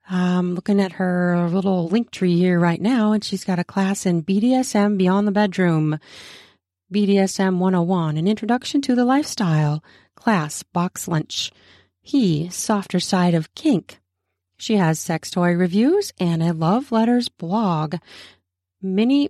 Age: 30-49